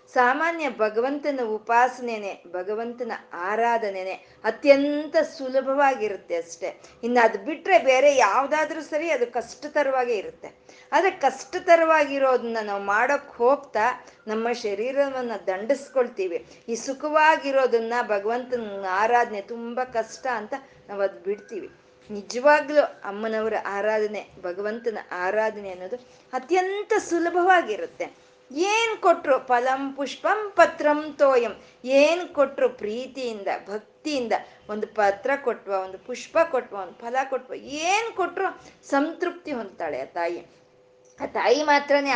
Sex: female